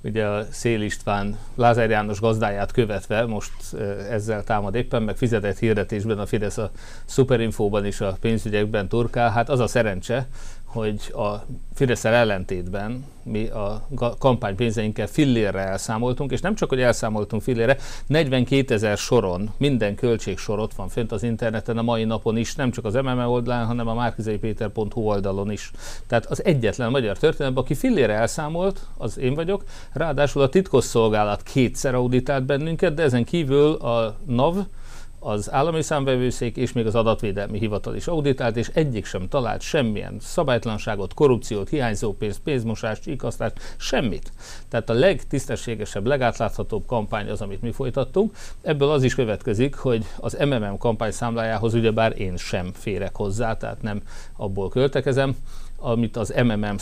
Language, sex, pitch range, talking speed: Hungarian, male, 105-125 Hz, 145 wpm